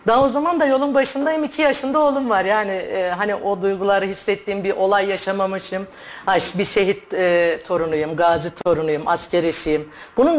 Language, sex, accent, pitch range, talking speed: Turkish, female, native, 195-245 Hz, 160 wpm